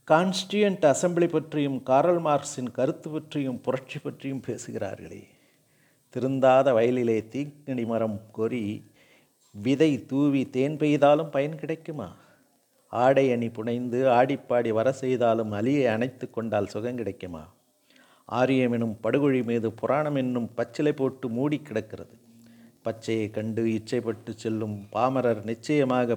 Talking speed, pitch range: 110 wpm, 115-140 Hz